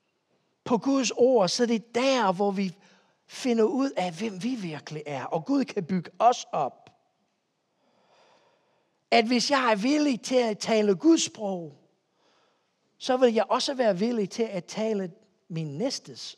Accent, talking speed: native, 160 wpm